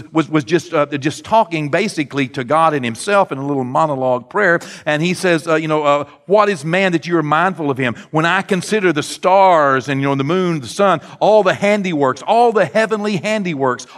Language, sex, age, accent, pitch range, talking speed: English, male, 50-69, American, 160-215 Hz, 225 wpm